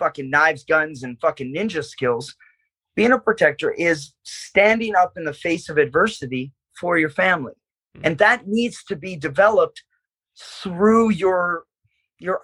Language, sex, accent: English, male, American